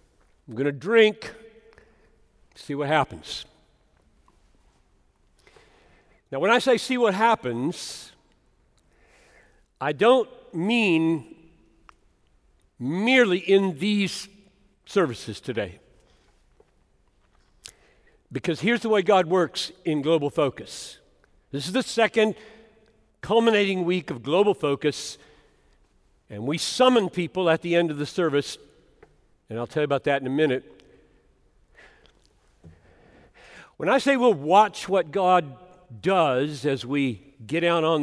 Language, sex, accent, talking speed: English, male, American, 110 wpm